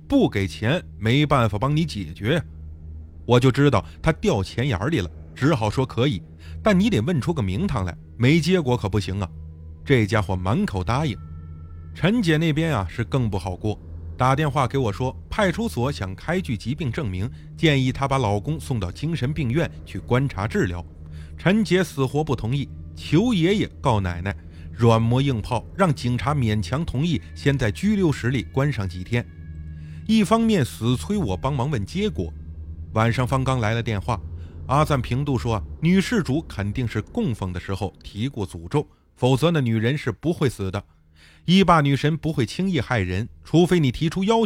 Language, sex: Chinese, male